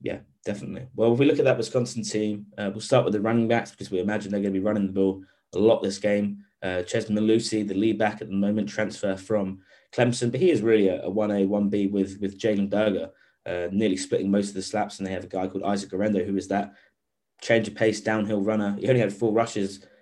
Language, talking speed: English, 250 wpm